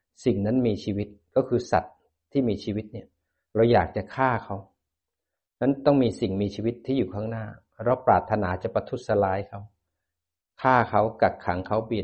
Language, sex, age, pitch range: Thai, male, 60-79, 95-115 Hz